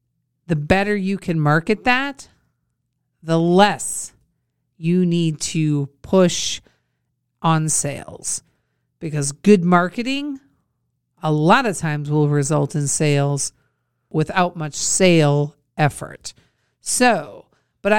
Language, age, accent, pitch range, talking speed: English, 50-69, American, 150-195 Hz, 105 wpm